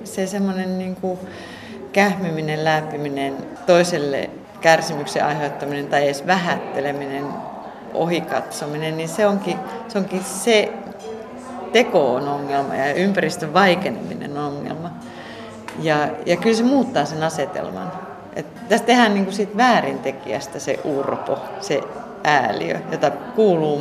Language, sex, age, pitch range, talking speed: Finnish, female, 40-59, 145-200 Hz, 105 wpm